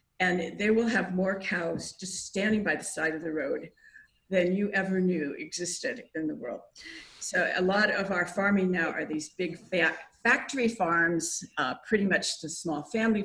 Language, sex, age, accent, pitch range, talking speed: English, female, 50-69, American, 170-215 Hz, 180 wpm